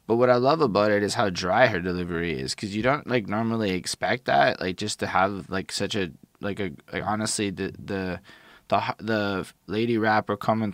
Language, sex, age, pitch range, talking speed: English, male, 20-39, 95-110 Hz, 205 wpm